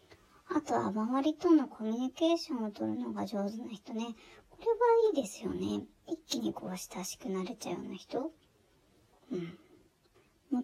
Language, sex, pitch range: Japanese, male, 205-305 Hz